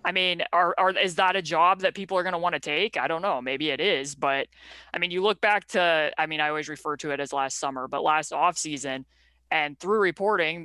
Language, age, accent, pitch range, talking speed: English, 20-39, American, 150-175 Hz, 260 wpm